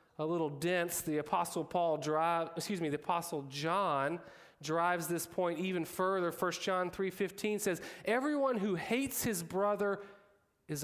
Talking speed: 150 wpm